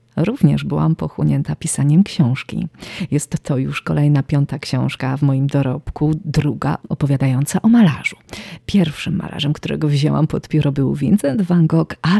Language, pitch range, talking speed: Polish, 140-165 Hz, 145 wpm